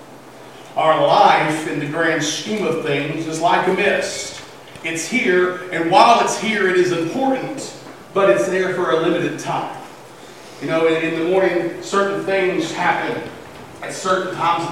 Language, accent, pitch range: English, American, 160-205 Hz